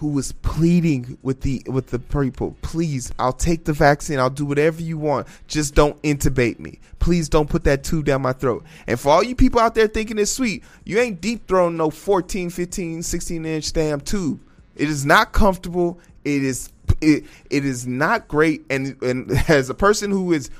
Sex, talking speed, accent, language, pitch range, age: male, 200 wpm, American, English, 145-185 Hz, 30-49